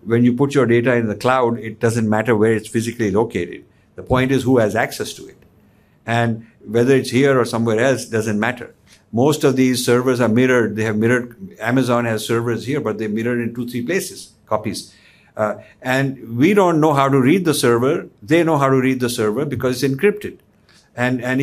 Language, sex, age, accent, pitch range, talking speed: English, male, 50-69, Indian, 110-135 Hz, 210 wpm